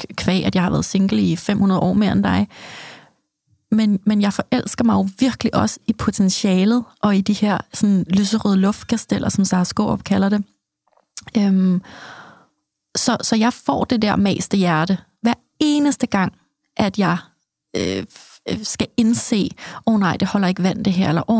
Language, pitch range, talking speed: Danish, 185-225 Hz, 175 wpm